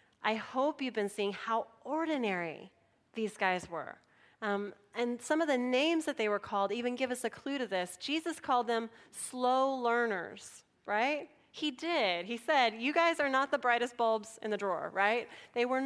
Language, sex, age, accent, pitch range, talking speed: English, female, 30-49, American, 205-270 Hz, 190 wpm